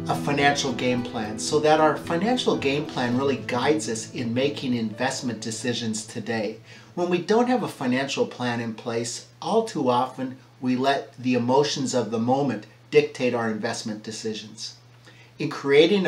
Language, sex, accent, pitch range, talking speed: English, male, American, 120-150 Hz, 160 wpm